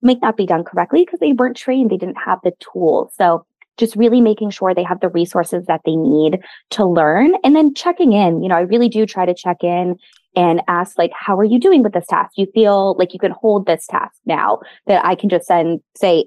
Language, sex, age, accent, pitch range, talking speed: English, female, 20-39, American, 180-240 Hz, 245 wpm